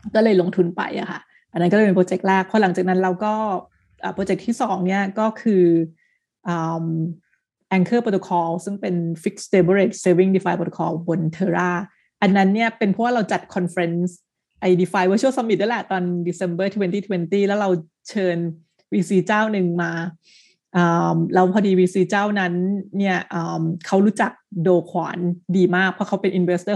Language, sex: Thai, female